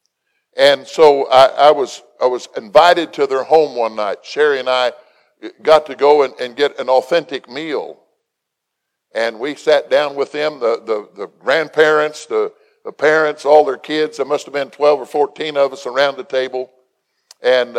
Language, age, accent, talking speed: English, 50-69, American, 180 wpm